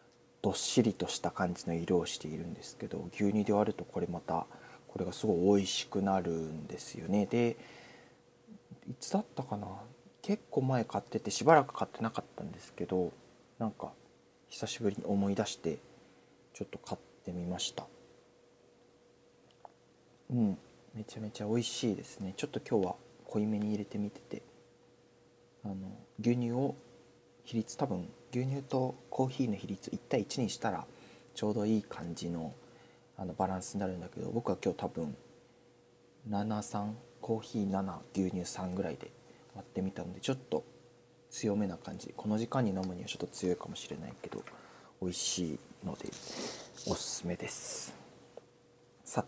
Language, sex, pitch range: Japanese, male, 95-115 Hz